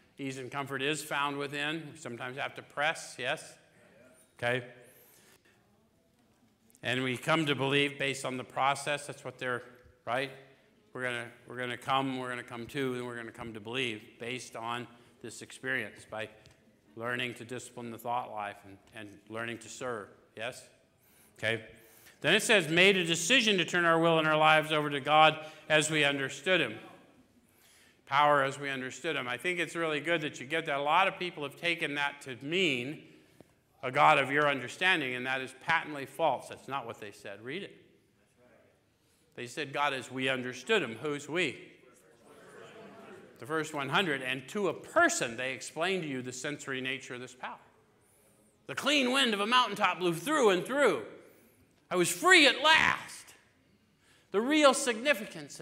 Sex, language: male, English